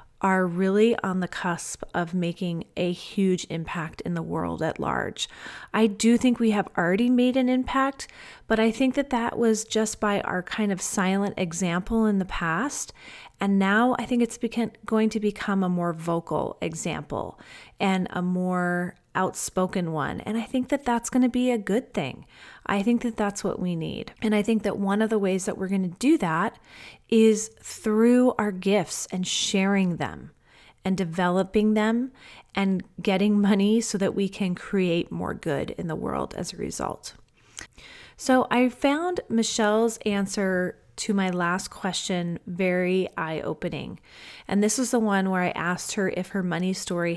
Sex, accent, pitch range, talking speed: female, American, 180-220 Hz, 175 wpm